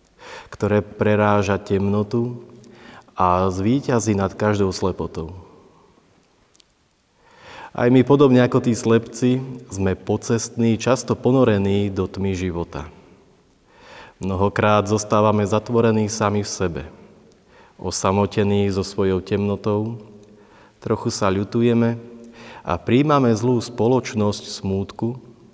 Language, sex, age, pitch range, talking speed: Slovak, male, 30-49, 95-115 Hz, 90 wpm